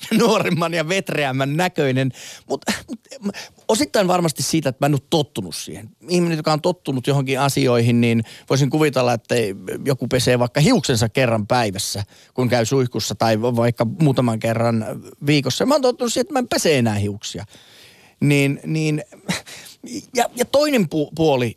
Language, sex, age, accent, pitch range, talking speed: Finnish, male, 30-49, native, 120-170 Hz, 155 wpm